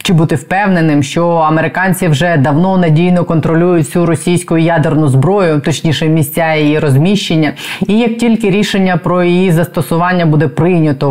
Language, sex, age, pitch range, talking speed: Ukrainian, female, 20-39, 150-180 Hz, 140 wpm